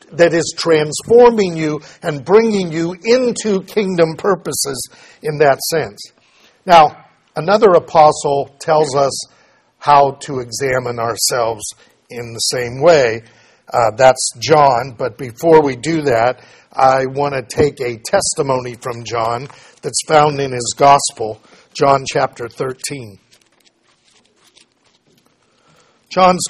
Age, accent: 50-69, American